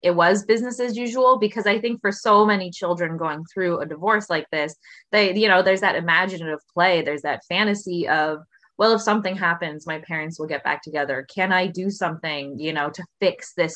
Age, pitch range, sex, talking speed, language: 20-39, 160-205 Hz, female, 210 wpm, English